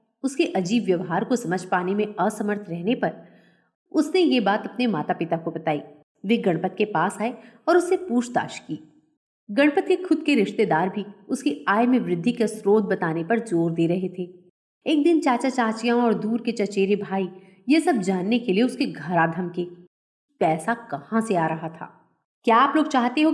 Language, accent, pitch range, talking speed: Hindi, native, 185-275 Hz, 190 wpm